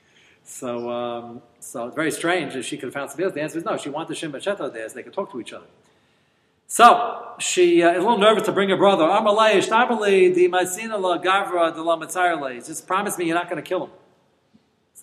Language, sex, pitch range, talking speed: English, male, 150-230 Hz, 195 wpm